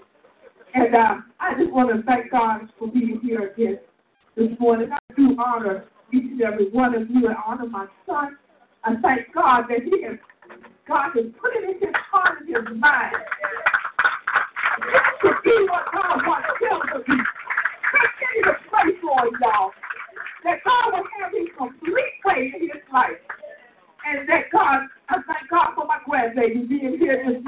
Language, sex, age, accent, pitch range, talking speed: English, female, 50-69, American, 245-395 Hz, 175 wpm